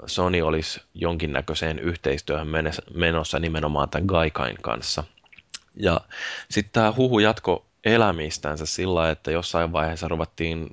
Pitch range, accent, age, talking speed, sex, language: 75-80 Hz, native, 20-39, 110 wpm, male, Finnish